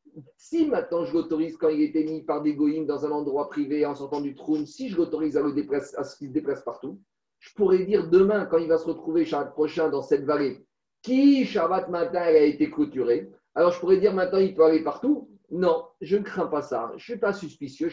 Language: French